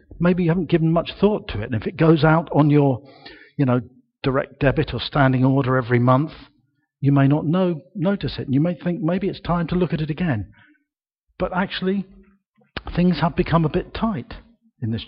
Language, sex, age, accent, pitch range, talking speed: English, male, 50-69, British, 125-175 Hz, 205 wpm